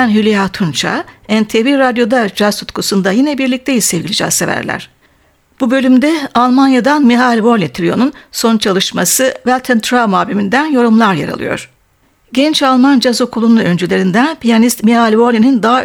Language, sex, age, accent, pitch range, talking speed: Turkish, female, 60-79, native, 200-255 Hz, 115 wpm